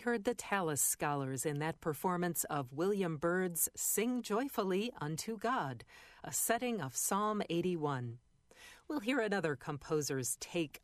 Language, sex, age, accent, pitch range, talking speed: English, female, 40-59, American, 145-200 Hz, 135 wpm